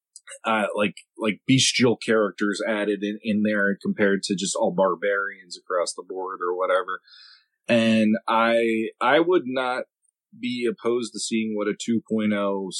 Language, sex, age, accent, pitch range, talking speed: English, male, 30-49, American, 105-140 Hz, 145 wpm